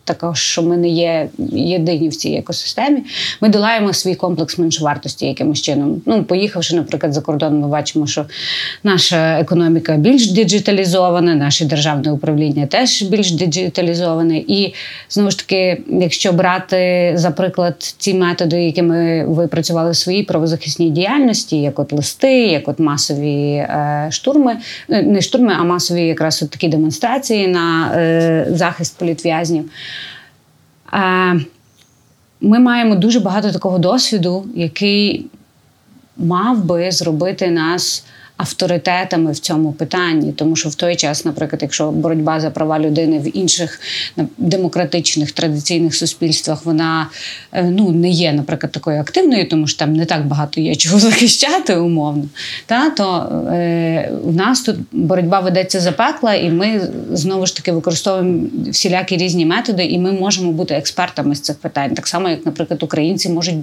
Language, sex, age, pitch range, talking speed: Ukrainian, female, 30-49, 160-185 Hz, 140 wpm